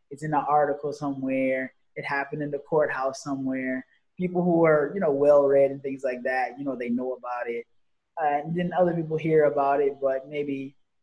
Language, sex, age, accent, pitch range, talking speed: Indonesian, male, 20-39, American, 130-160 Hz, 205 wpm